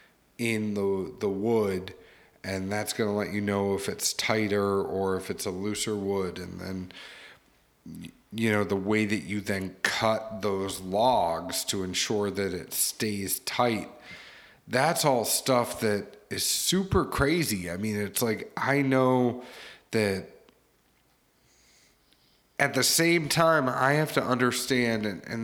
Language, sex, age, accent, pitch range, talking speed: English, male, 30-49, American, 105-130 Hz, 145 wpm